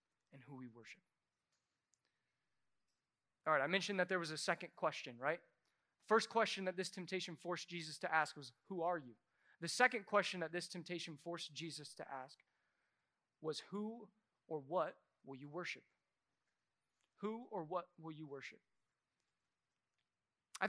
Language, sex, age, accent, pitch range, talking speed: English, male, 30-49, American, 175-245 Hz, 150 wpm